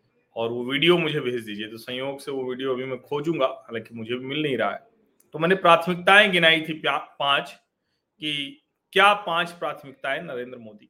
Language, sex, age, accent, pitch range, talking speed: Hindi, male, 40-59, native, 145-195 Hz, 180 wpm